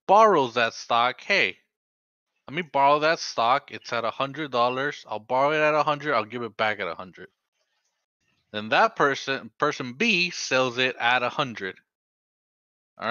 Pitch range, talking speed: 115-150 Hz, 175 wpm